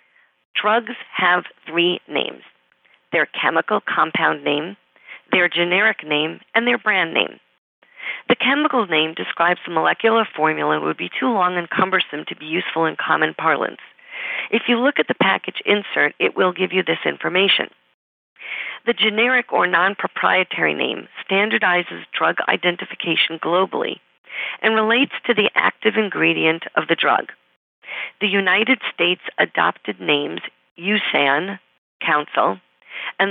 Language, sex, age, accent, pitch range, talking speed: English, female, 40-59, American, 165-215 Hz, 130 wpm